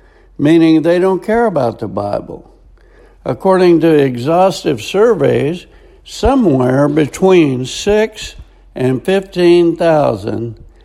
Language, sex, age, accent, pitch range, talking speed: English, male, 60-79, American, 135-185 Hz, 95 wpm